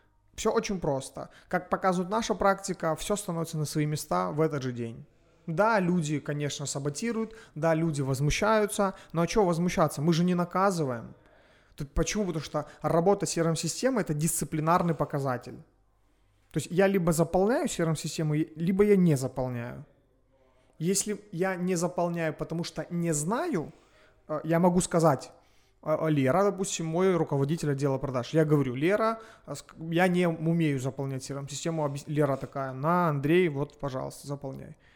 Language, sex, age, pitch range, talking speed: Russian, male, 30-49, 145-180 Hz, 140 wpm